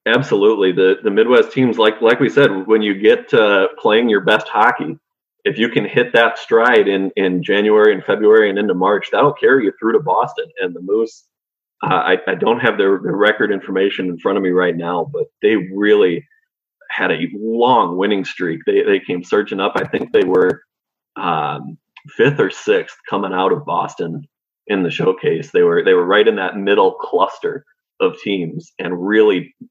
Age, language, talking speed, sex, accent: 30-49, English, 190 wpm, male, American